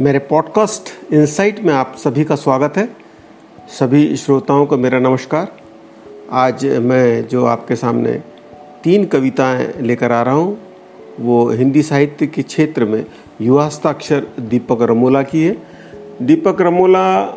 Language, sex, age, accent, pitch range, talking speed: Hindi, male, 50-69, native, 120-160 Hz, 135 wpm